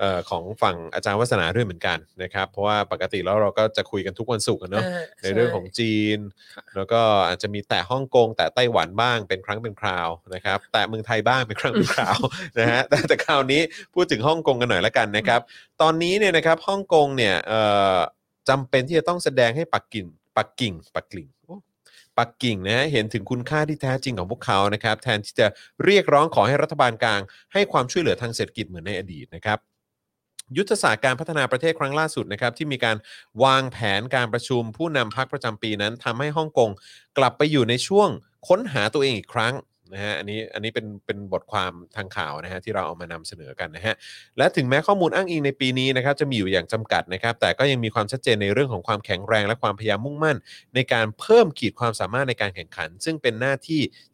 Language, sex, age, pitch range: Thai, male, 30-49, 105-145 Hz